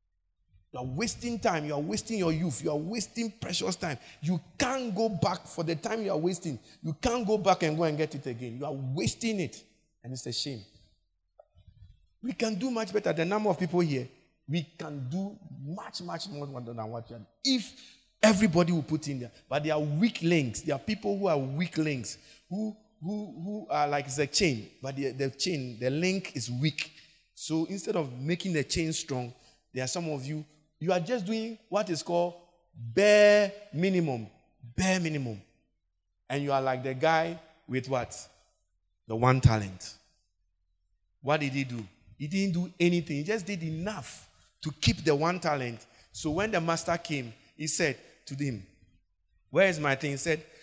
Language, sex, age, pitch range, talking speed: English, male, 50-69, 125-180 Hz, 190 wpm